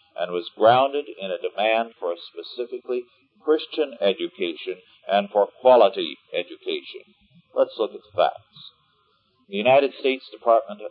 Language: English